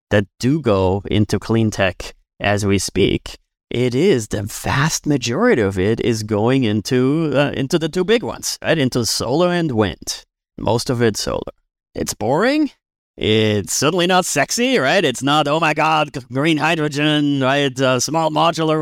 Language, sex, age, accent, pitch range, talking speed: English, male, 30-49, American, 110-140 Hz, 165 wpm